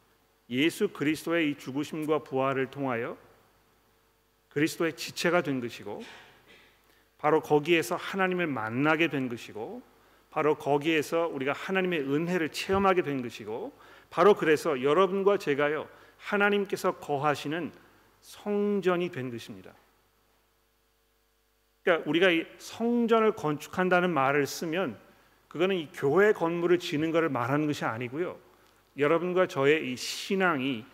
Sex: male